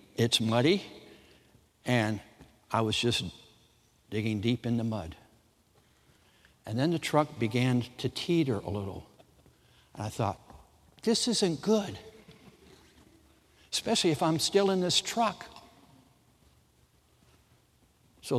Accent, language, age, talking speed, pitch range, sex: American, English, 60-79, 110 wpm, 115-135 Hz, male